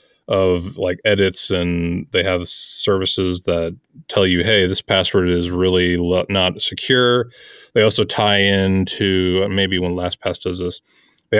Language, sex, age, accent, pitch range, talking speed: English, male, 30-49, American, 90-105 Hz, 140 wpm